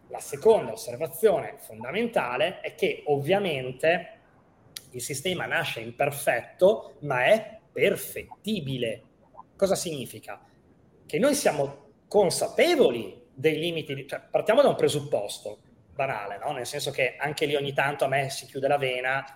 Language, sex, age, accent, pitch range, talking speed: Italian, male, 30-49, native, 145-195 Hz, 135 wpm